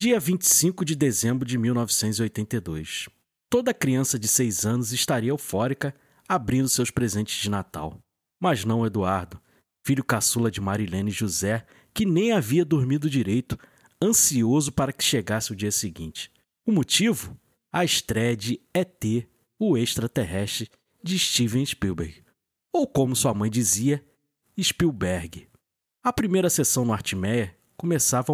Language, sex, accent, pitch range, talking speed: Portuguese, male, Brazilian, 110-150 Hz, 130 wpm